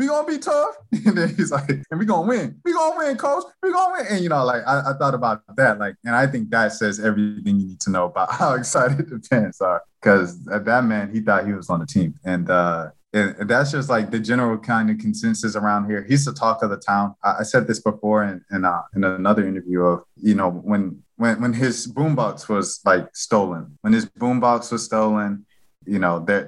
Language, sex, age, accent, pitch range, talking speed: English, male, 20-39, American, 105-140 Hz, 245 wpm